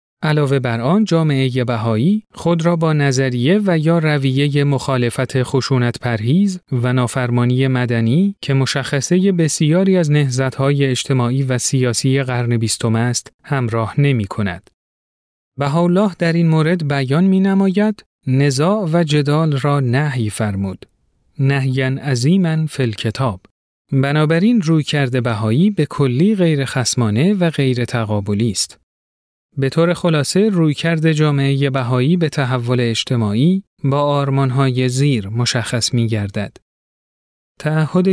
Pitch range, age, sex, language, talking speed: 120-155 Hz, 40-59, male, Persian, 115 wpm